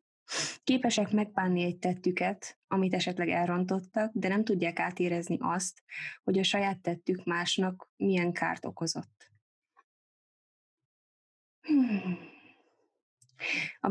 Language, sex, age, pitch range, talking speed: Hungarian, female, 20-39, 170-205 Hz, 90 wpm